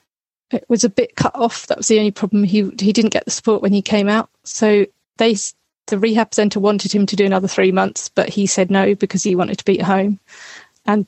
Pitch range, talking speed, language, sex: 195-225 Hz, 245 wpm, English, female